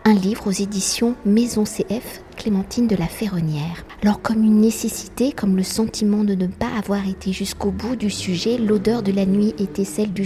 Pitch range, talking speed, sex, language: 190-220 Hz, 195 wpm, female, French